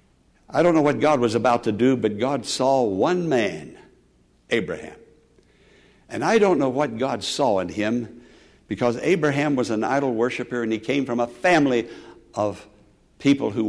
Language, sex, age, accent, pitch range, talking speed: English, male, 60-79, American, 115-190 Hz, 170 wpm